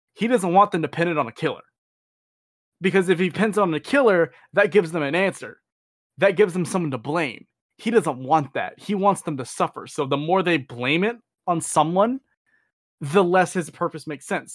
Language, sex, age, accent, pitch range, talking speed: English, male, 20-39, American, 145-190 Hz, 215 wpm